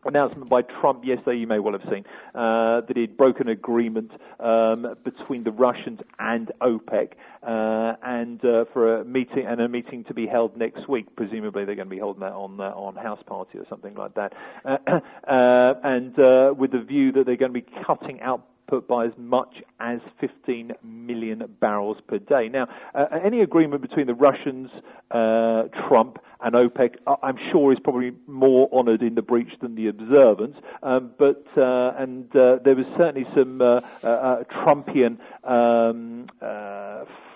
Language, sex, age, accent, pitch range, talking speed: English, male, 40-59, British, 115-135 Hz, 175 wpm